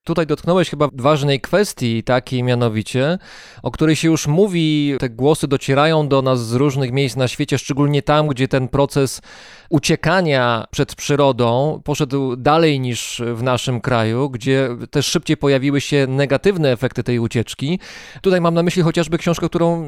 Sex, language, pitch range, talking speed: male, Polish, 125-155 Hz, 155 wpm